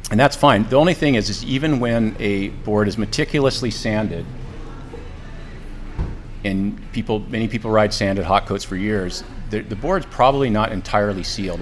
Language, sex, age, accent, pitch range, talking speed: English, male, 40-59, American, 95-110 Hz, 165 wpm